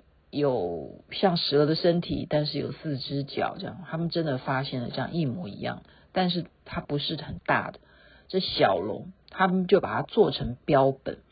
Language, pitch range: Chinese, 165-265 Hz